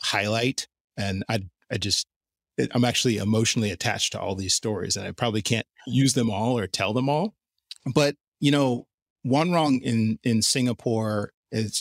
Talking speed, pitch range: 170 wpm, 105-125 Hz